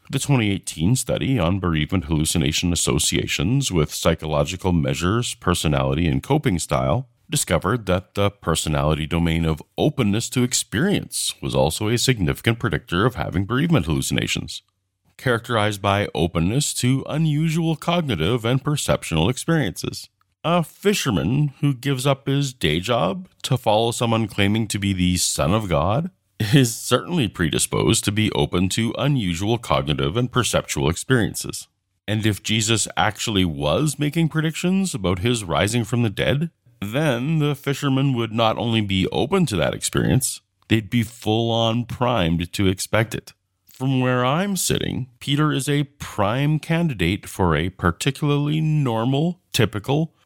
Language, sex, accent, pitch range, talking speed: English, male, American, 95-140 Hz, 140 wpm